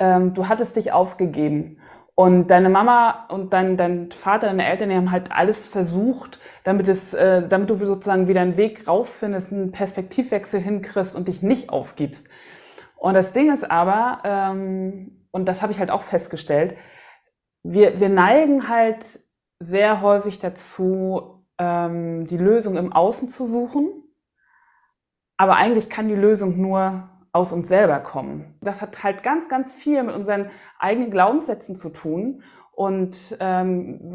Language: German